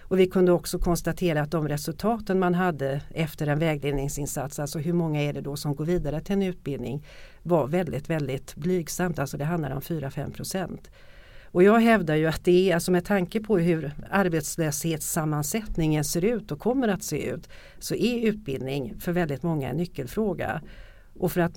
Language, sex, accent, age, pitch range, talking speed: Swedish, female, native, 50-69, 150-185 Hz, 185 wpm